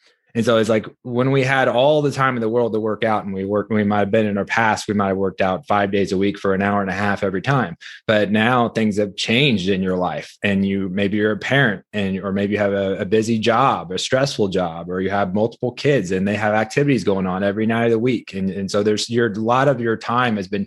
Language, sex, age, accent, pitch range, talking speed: English, male, 20-39, American, 100-125 Hz, 275 wpm